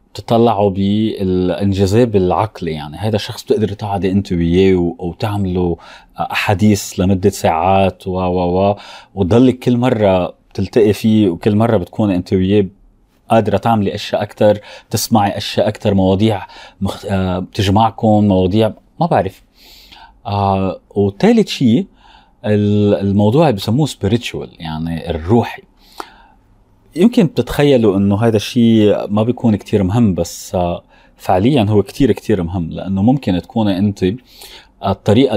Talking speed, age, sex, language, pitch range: 115 wpm, 30-49, male, Arabic, 95-110 Hz